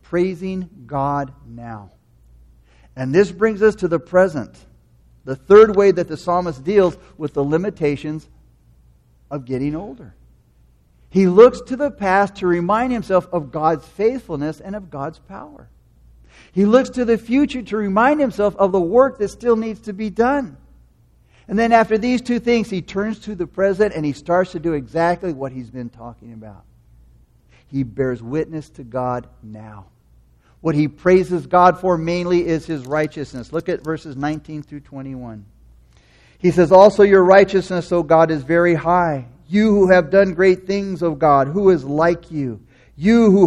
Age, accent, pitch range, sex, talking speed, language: 50-69, American, 135-190 Hz, male, 170 wpm, English